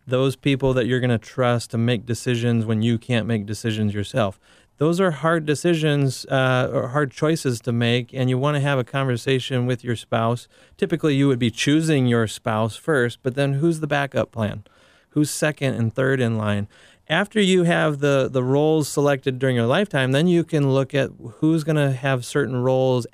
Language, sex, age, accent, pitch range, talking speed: English, male, 30-49, American, 115-140 Hz, 200 wpm